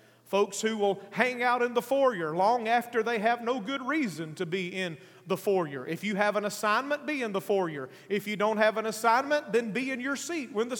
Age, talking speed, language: 40-59, 235 wpm, English